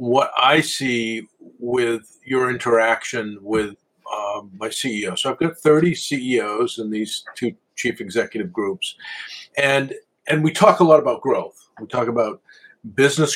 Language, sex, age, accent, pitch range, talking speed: English, male, 50-69, American, 115-155 Hz, 150 wpm